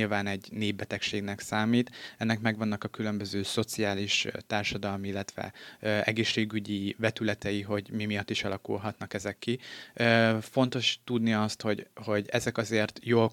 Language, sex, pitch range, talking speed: Hungarian, male, 105-115 Hz, 135 wpm